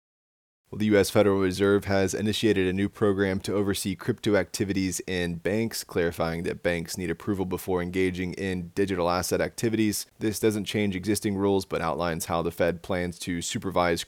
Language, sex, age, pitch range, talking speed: English, male, 20-39, 85-100 Hz, 165 wpm